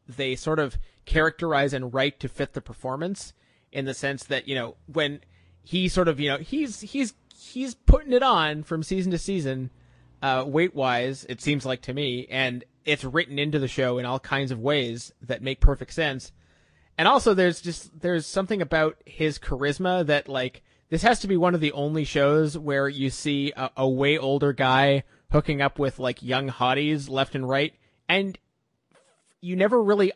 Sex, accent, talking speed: male, American, 190 wpm